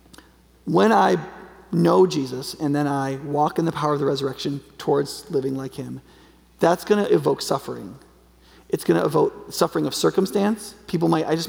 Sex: male